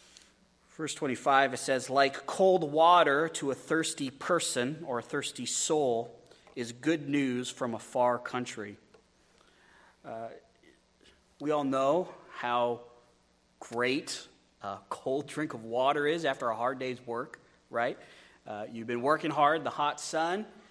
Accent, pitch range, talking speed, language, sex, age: American, 120-160 Hz, 140 wpm, English, male, 30-49